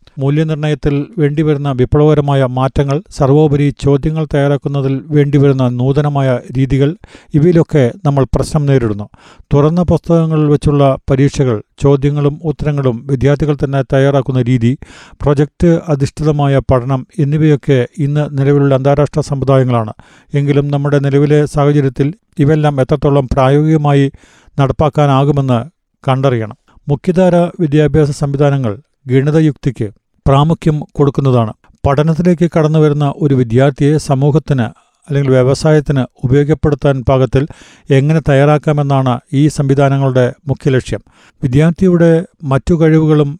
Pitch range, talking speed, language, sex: 135-150 Hz, 90 wpm, Malayalam, male